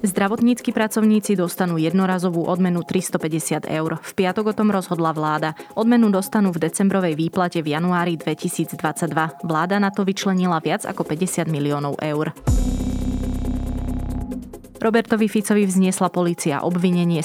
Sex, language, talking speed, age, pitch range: female, Slovak, 120 wpm, 20-39, 160-190 Hz